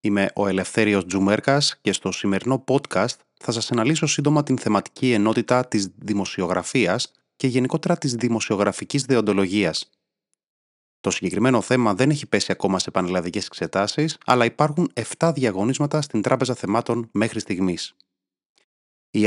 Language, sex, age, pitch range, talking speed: Greek, male, 30-49, 100-135 Hz, 130 wpm